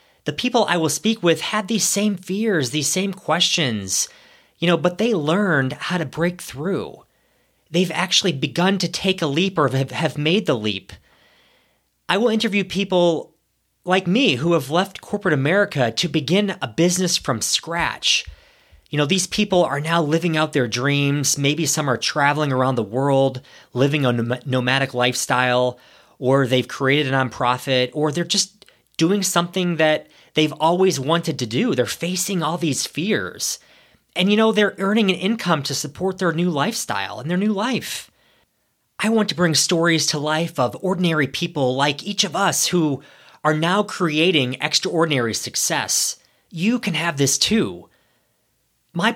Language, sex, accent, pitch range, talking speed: English, male, American, 135-185 Hz, 165 wpm